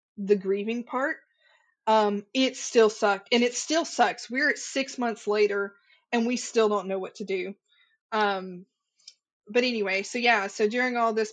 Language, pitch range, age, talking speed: English, 200-240 Hz, 20-39, 175 wpm